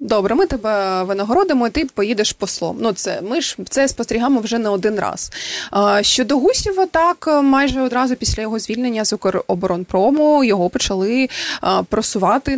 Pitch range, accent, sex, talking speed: 195-255 Hz, native, female, 150 wpm